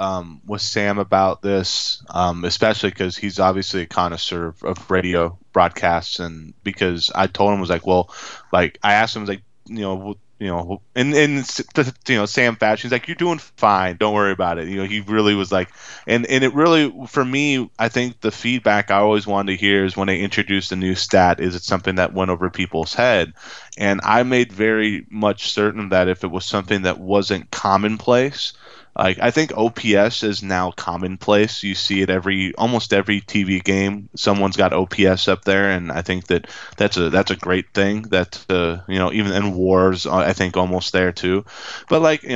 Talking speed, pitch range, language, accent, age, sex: 210 wpm, 95-105 Hz, English, American, 20-39, male